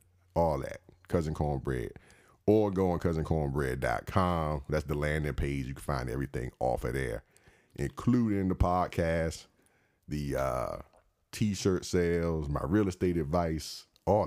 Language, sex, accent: English, male, American